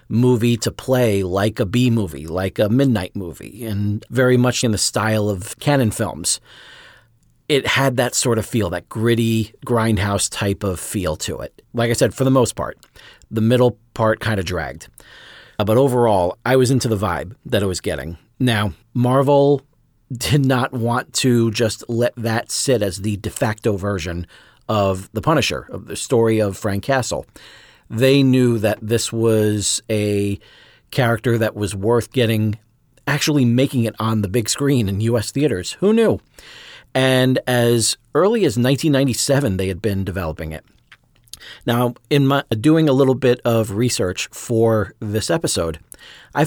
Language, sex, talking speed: English, male, 165 wpm